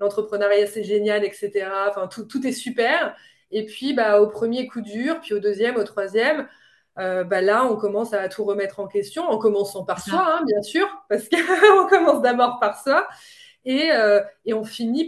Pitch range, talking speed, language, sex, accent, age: 200-270 Hz, 195 wpm, French, female, French, 20-39